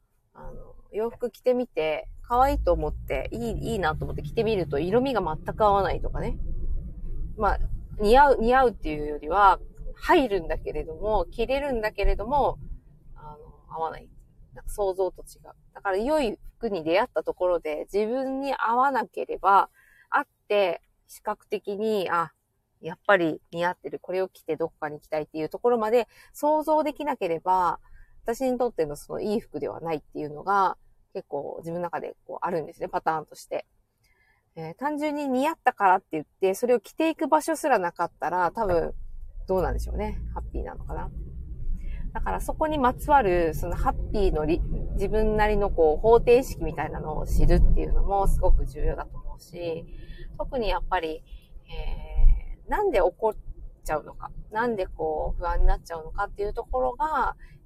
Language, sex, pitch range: Japanese, female, 165-250 Hz